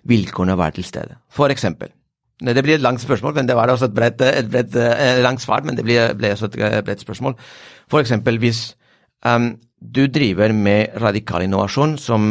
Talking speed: 190 wpm